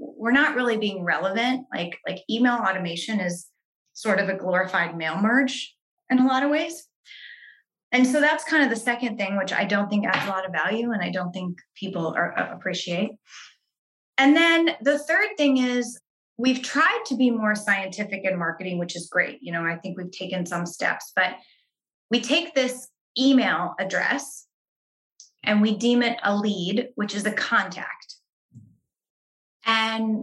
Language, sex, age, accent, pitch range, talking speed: English, female, 20-39, American, 195-270 Hz, 175 wpm